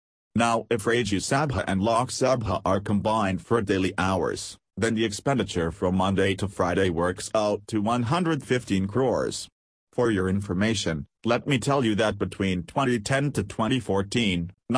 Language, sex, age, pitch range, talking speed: Hindi, male, 40-59, 95-115 Hz, 145 wpm